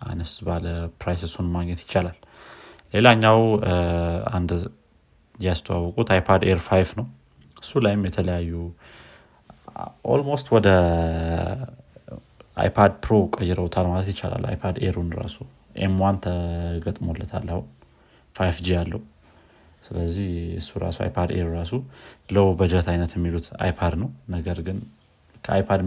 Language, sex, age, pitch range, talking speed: Amharic, male, 30-49, 85-100 Hz, 110 wpm